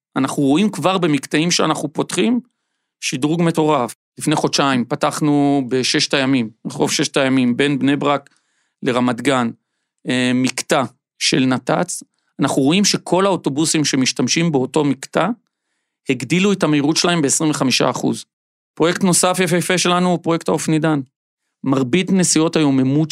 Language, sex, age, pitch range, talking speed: Hebrew, male, 40-59, 130-165 Hz, 120 wpm